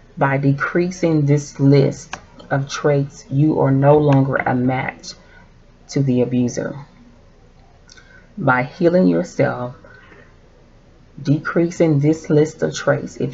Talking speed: 110 wpm